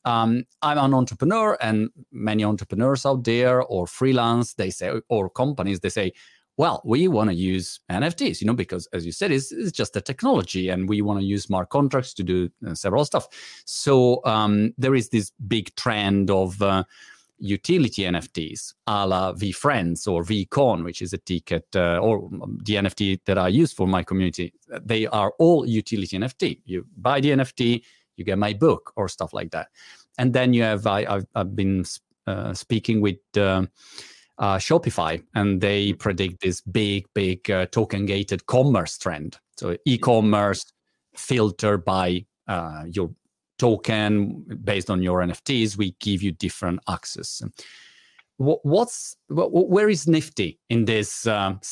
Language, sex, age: Italian, male, 40-59